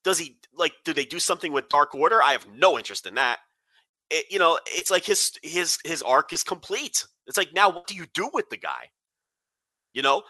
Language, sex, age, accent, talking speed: English, male, 30-49, American, 225 wpm